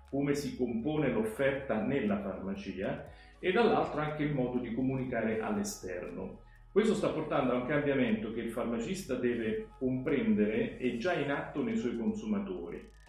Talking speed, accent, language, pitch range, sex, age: 145 wpm, native, Italian, 110-155 Hz, male, 40-59